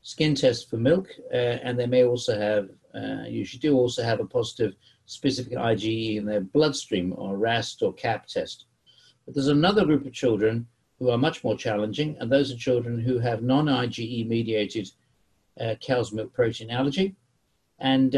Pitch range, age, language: 115-145 Hz, 50-69, English